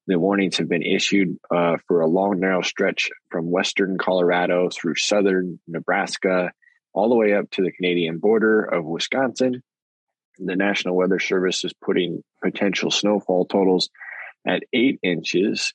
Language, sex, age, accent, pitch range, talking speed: English, male, 20-39, American, 90-100 Hz, 150 wpm